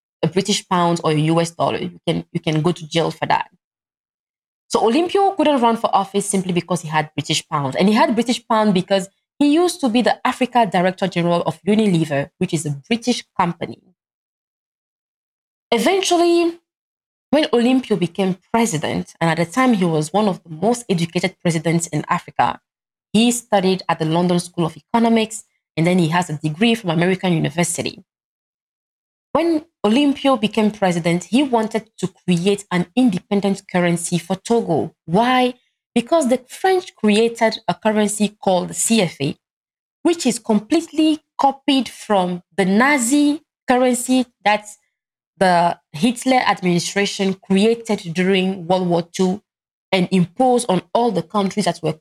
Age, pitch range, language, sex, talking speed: 20-39, 175-240 Hz, English, female, 150 wpm